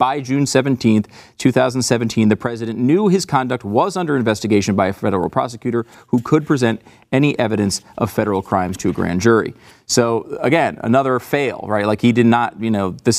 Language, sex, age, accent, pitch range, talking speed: English, male, 40-59, American, 105-135 Hz, 180 wpm